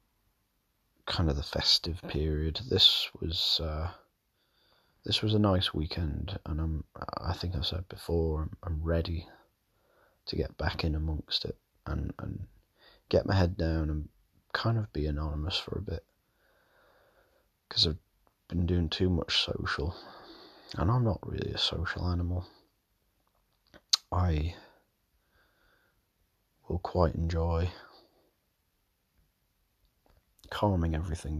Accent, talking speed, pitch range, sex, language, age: British, 120 wpm, 80-100 Hz, male, English, 30-49